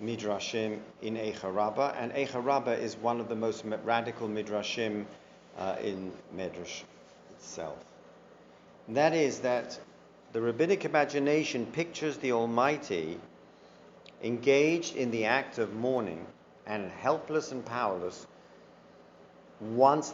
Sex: male